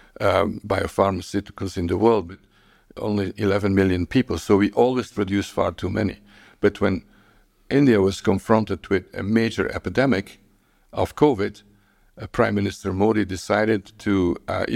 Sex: male